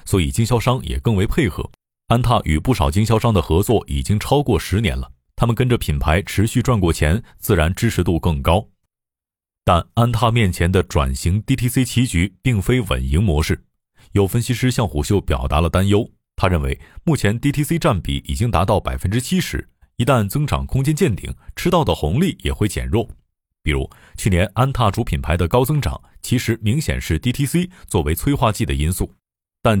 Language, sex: Chinese, male